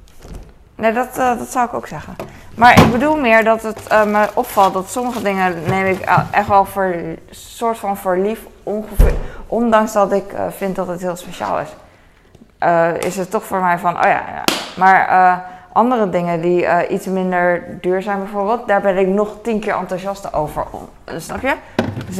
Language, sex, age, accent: Dutch, female, 20-39, Dutch